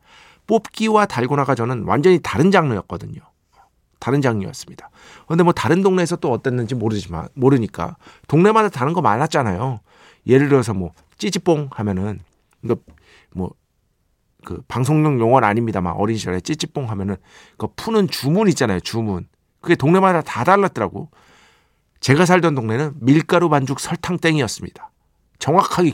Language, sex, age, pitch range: Korean, male, 50-69, 105-165 Hz